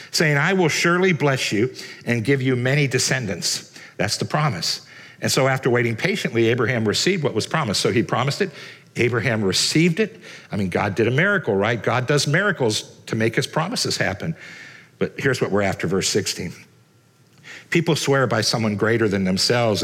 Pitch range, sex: 105-140 Hz, male